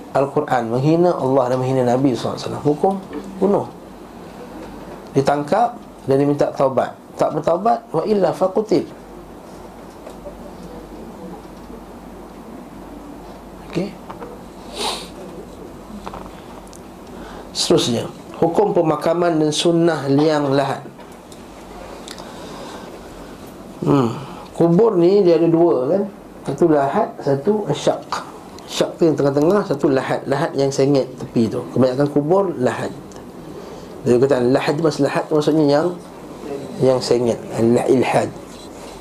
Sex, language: male, Malay